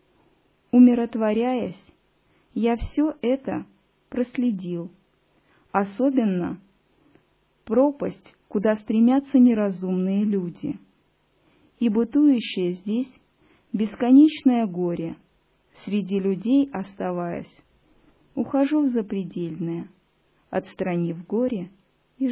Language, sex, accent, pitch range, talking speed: Russian, female, native, 185-245 Hz, 65 wpm